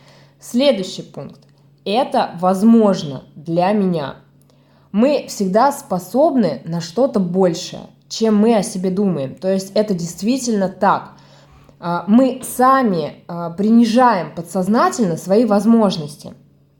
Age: 20-39